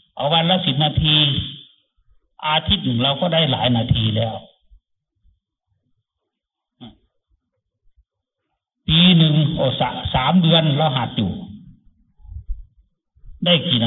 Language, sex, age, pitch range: English, male, 60-79, 125-180 Hz